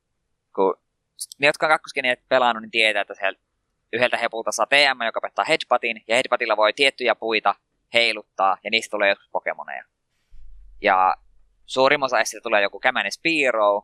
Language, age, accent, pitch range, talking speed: Finnish, 20-39, native, 105-145 Hz, 140 wpm